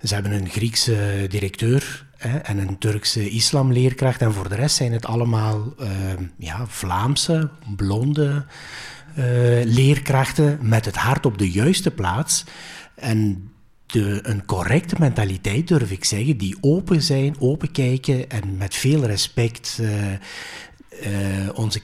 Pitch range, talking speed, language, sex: 105-135 Hz, 135 wpm, Dutch, male